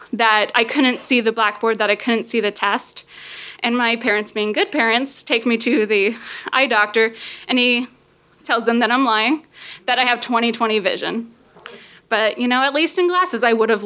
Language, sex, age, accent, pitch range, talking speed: English, female, 20-39, American, 225-270 Hz, 200 wpm